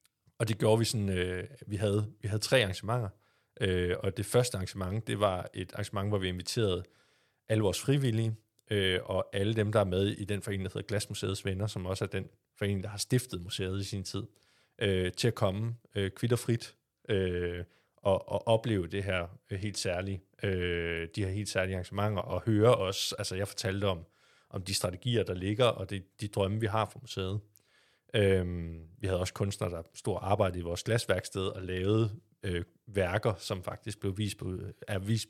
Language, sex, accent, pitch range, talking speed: Danish, male, native, 95-110 Hz, 195 wpm